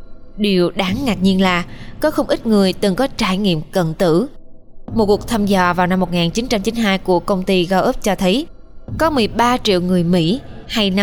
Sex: female